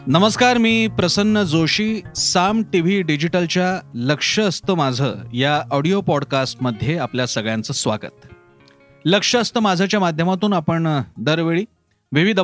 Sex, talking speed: male, 110 wpm